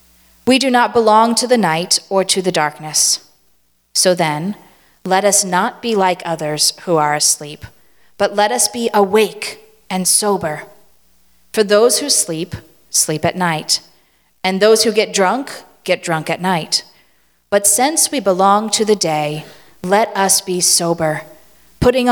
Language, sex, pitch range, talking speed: English, female, 155-200 Hz, 155 wpm